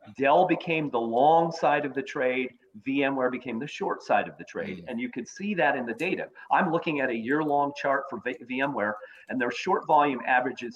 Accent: American